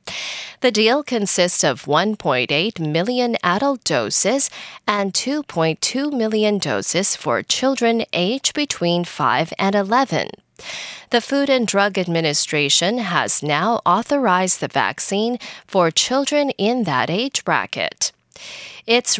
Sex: female